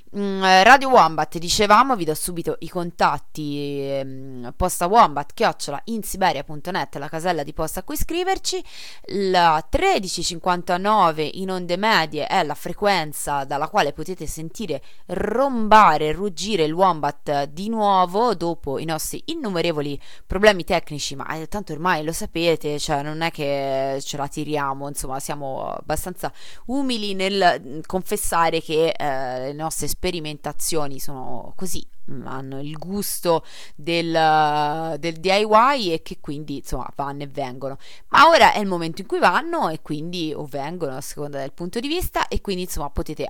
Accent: native